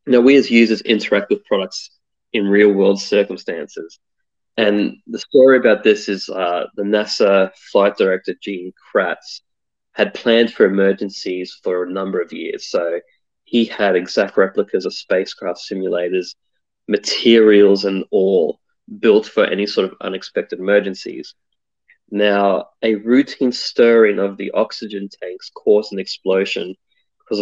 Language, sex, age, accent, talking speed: English, male, 20-39, Australian, 135 wpm